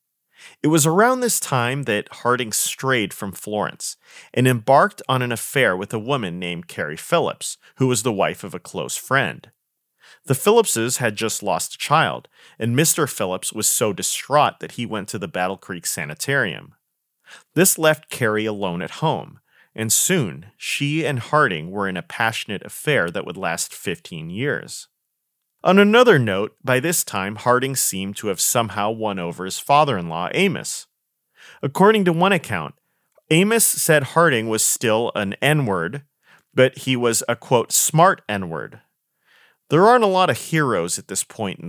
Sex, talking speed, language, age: male, 165 wpm, English, 30-49